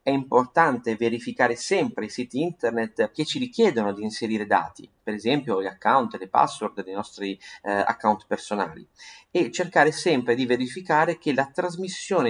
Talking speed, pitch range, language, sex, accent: 160 wpm, 115-170 Hz, Italian, male, native